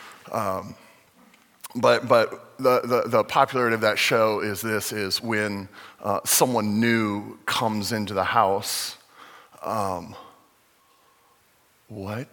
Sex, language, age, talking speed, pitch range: male, English, 40-59, 110 wpm, 105-125 Hz